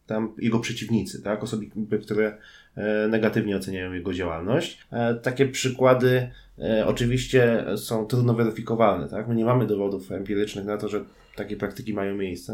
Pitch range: 100-115 Hz